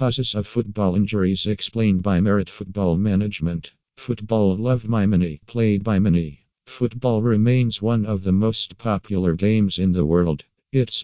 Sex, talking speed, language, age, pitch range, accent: male, 150 wpm, Italian, 50-69, 95-110 Hz, American